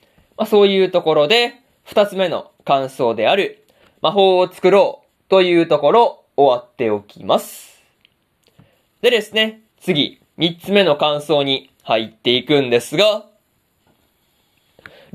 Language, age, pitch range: Japanese, 20-39, 145-210 Hz